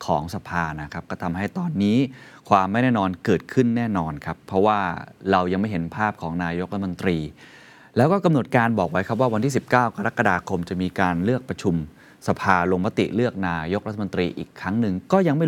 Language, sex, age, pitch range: Thai, male, 20-39, 90-120 Hz